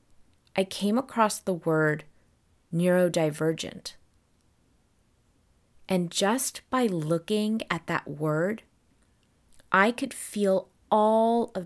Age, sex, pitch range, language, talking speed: 20-39, female, 170-215 Hz, English, 95 wpm